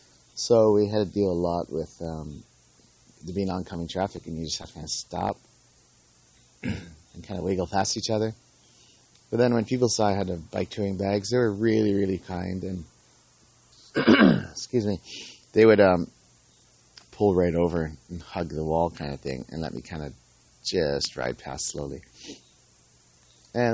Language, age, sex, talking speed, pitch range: English, 30-49, male, 175 wpm, 80-110 Hz